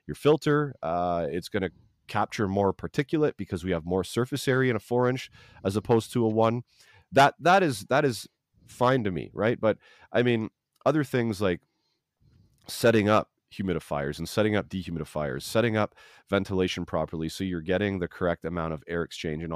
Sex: male